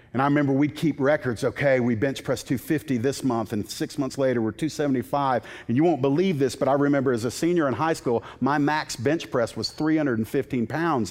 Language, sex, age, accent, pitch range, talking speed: English, male, 50-69, American, 140-220 Hz, 215 wpm